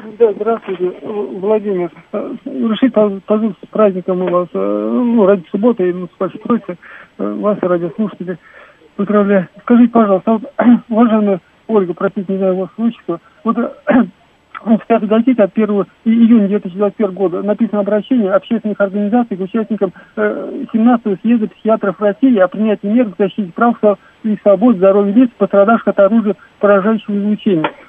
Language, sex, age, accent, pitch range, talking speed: Russian, male, 50-69, native, 195-225 Hz, 135 wpm